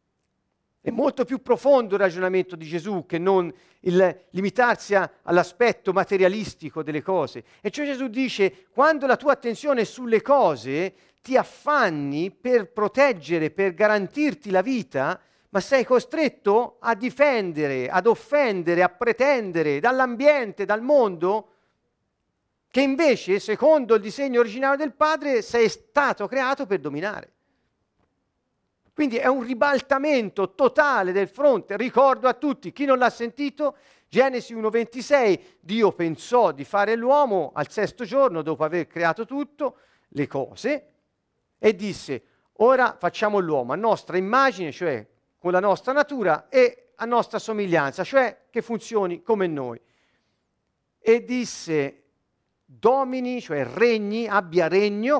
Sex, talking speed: male, 130 wpm